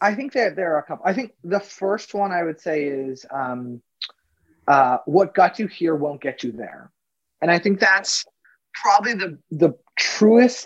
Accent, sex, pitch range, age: American, male, 155-210 Hz, 30-49